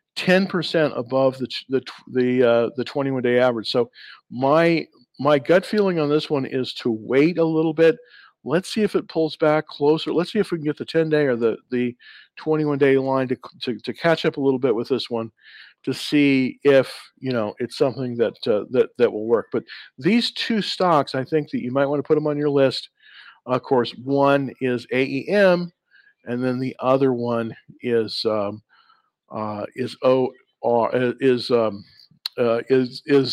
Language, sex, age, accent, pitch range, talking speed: English, male, 50-69, American, 120-160 Hz, 190 wpm